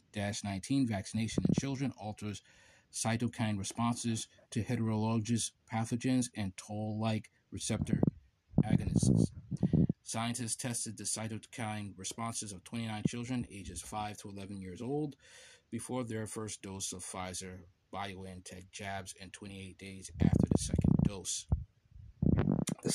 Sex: male